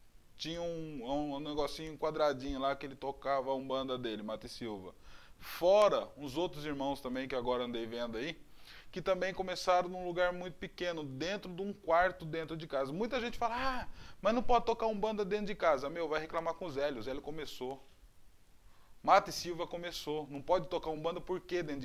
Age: 20-39